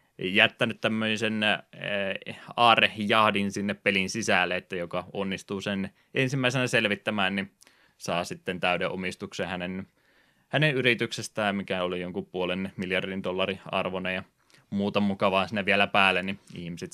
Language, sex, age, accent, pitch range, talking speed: Finnish, male, 20-39, native, 95-120 Hz, 125 wpm